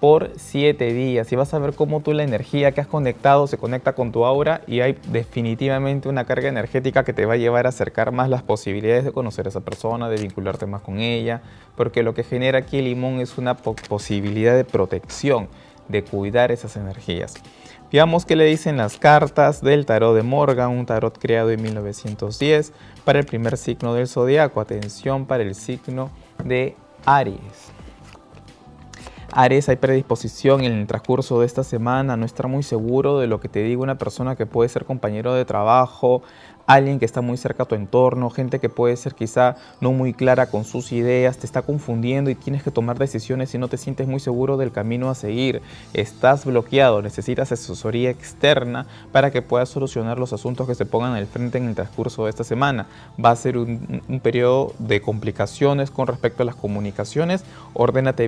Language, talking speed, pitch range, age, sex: Spanish, 195 wpm, 115-135 Hz, 20-39, male